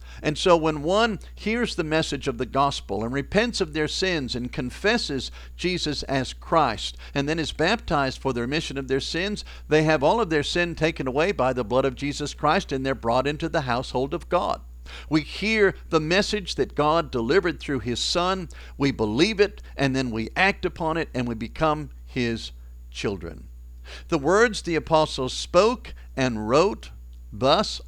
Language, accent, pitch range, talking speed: English, American, 110-160 Hz, 180 wpm